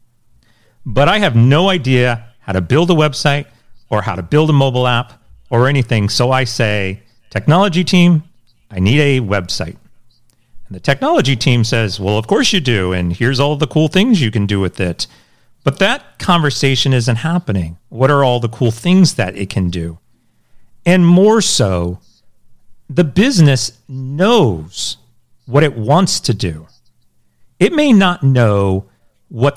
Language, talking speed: English, 160 wpm